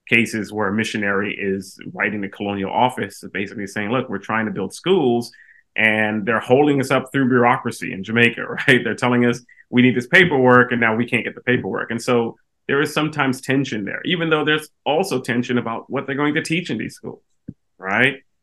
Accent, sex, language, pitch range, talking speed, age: American, male, English, 100-125 Hz, 205 wpm, 30-49